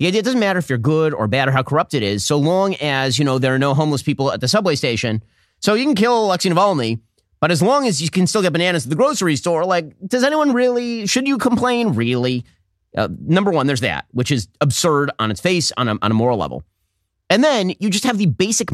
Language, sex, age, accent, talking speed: English, male, 30-49, American, 250 wpm